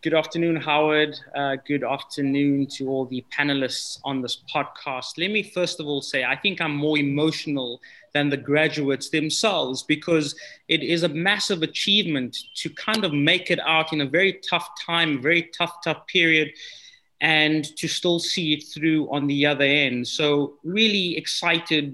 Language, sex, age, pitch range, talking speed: English, male, 20-39, 140-170 Hz, 170 wpm